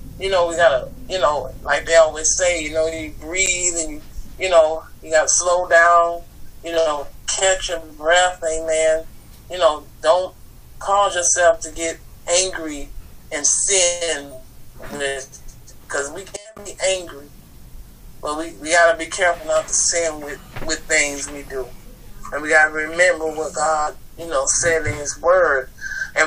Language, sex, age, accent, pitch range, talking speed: English, male, 30-49, American, 135-175 Hz, 165 wpm